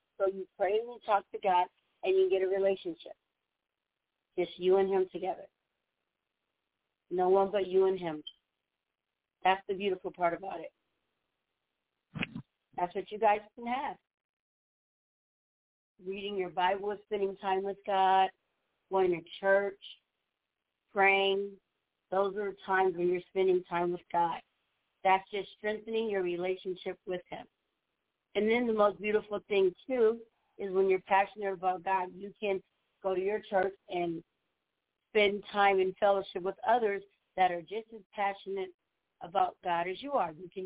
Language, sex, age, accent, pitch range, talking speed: English, female, 50-69, American, 185-205 Hz, 150 wpm